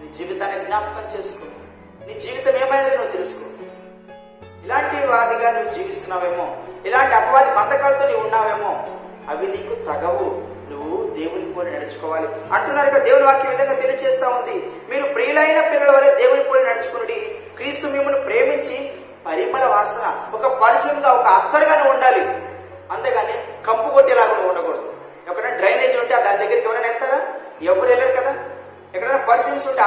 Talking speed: 135 wpm